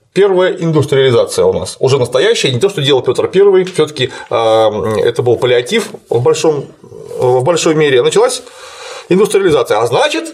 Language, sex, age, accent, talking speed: Russian, male, 30-49, native, 140 wpm